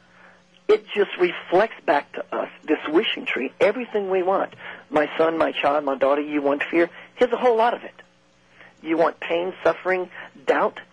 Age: 50-69